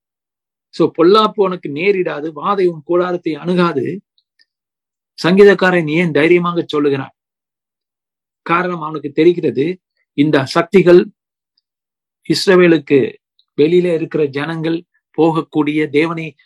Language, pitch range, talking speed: Tamil, 145-165 Hz, 80 wpm